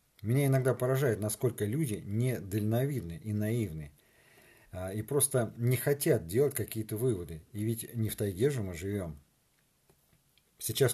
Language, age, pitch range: Russian, 50-69, 100-125 Hz